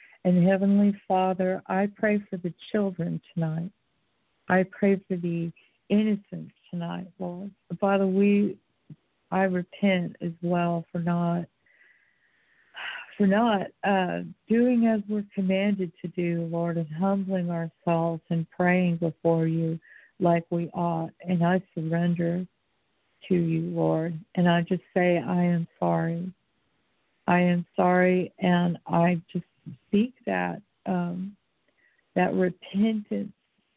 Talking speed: 120 wpm